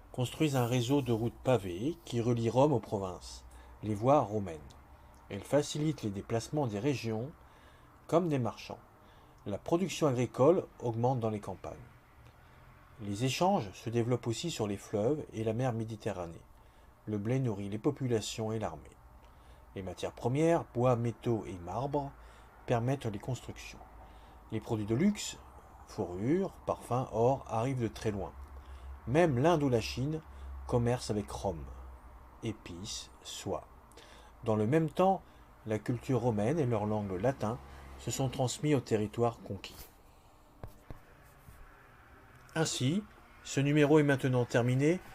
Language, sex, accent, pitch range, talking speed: French, male, French, 100-135 Hz, 135 wpm